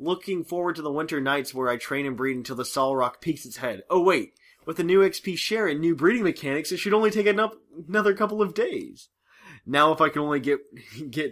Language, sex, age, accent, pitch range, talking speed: English, male, 20-39, American, 110-165 Hz, 235 wpm